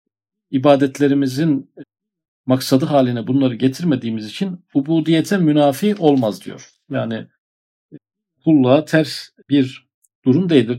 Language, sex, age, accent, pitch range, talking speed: Turkish, male, 50-69, native, 125-155 Hz, 90 wpm